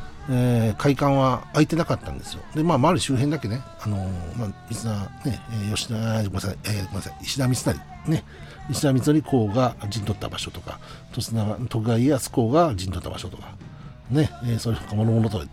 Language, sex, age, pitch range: Japanese, male, 60-79, 95-125 Hz